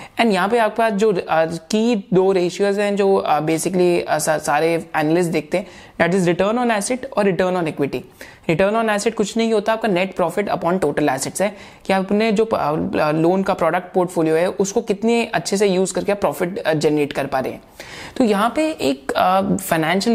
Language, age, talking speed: Hindi, 30-49, 140 wpm